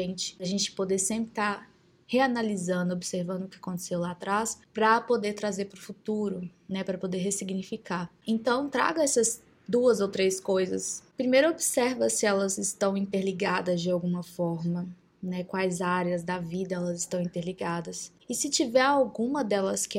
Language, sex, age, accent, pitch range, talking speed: Portuguese, female, 20-39, Brazilian, 185-215 Hz, 155 wpm